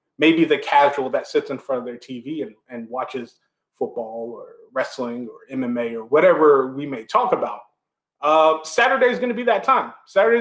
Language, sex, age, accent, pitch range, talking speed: English, male, 30-49, American, 145-215 Hz, 185 wpm